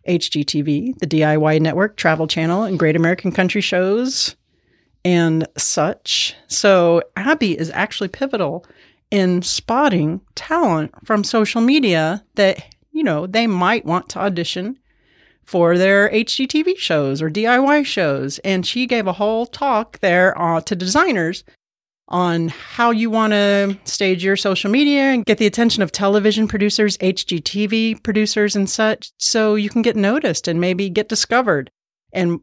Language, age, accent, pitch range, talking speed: English, 40-59, American, 170-220 Hz, 145 wpm